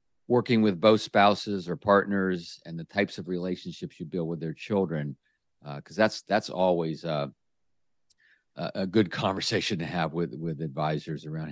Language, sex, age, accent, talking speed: English, male, 50-69, American, 160 wpm